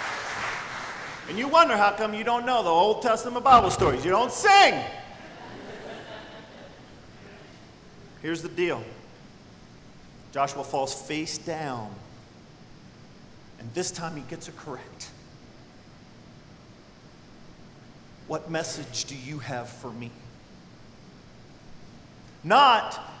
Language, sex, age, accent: English, male, 40-59, American